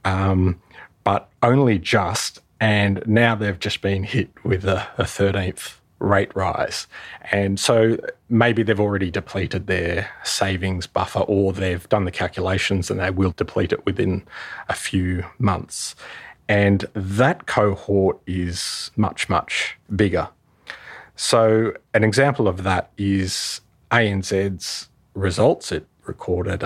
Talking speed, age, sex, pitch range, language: 125 wpm, 30-49, male, 95-105 Hz, English